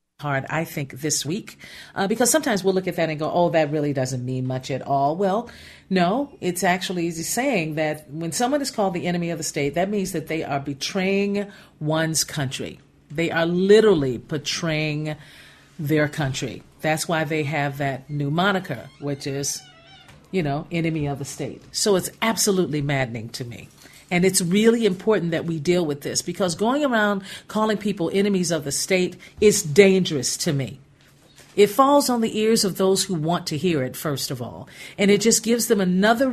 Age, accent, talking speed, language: 40-59, American, 190 wpm, English